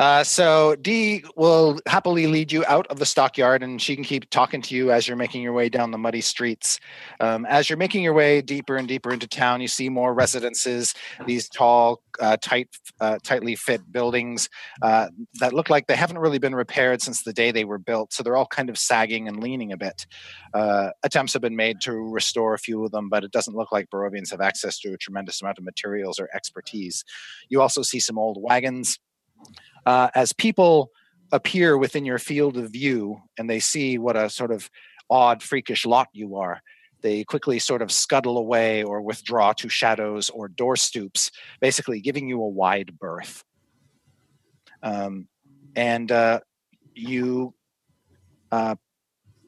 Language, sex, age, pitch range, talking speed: English, male, 30-49, 110-140 Hz, 185 wpm